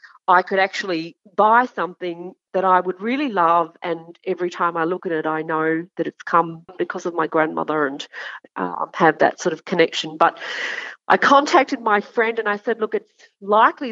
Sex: female